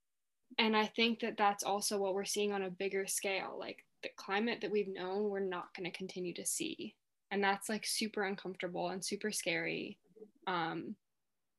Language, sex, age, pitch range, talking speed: English, female, 10-29, 190-210 Hz, 180 wpm